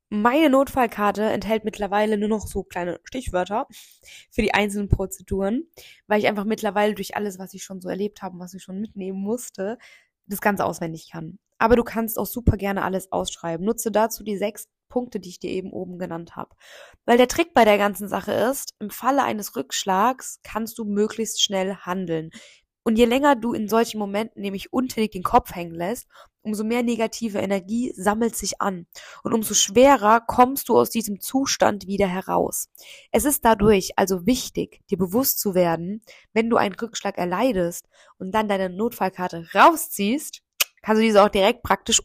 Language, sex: German, female